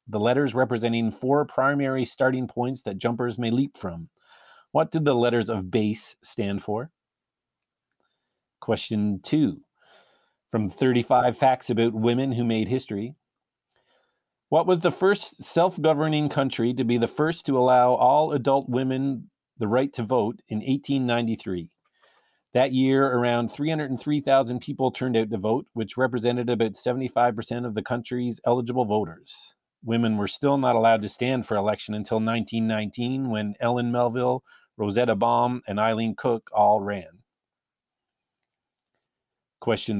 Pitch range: 115-135 Hz